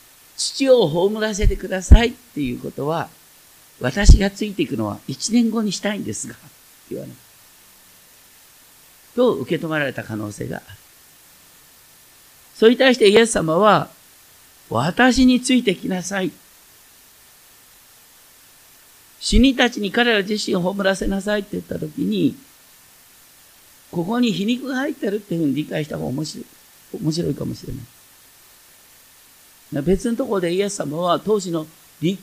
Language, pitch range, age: Japanese, 155-225 Hz, 50-69